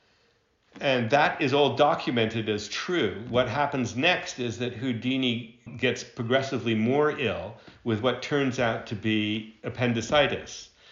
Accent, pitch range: American, 110-135 Hz